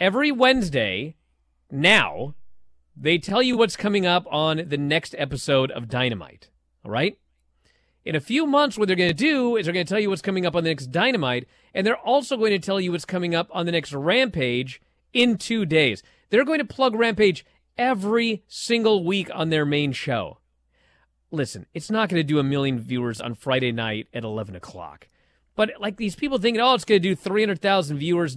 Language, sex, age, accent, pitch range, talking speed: English, male, 30-49, American, 150-240 Hz, 200 wpm